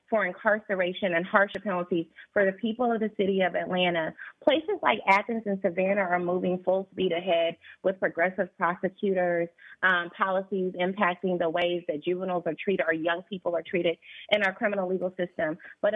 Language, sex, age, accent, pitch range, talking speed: English, female, 30-49, American, 175-210 Hz, 175 wpm